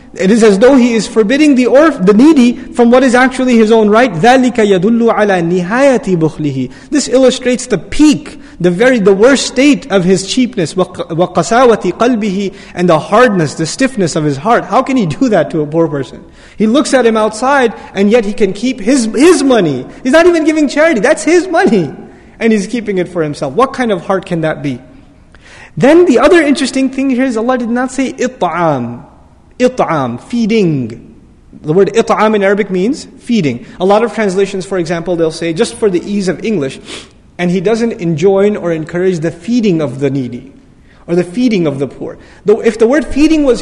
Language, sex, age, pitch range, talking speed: English, male, 30-49, 180-255 Hz, 195 wpm